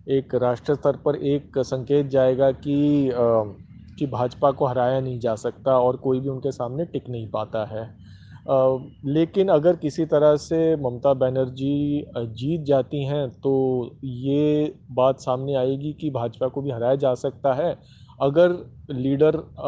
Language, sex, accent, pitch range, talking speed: Hindi, male, native, 125-150 Hz, 155 wpm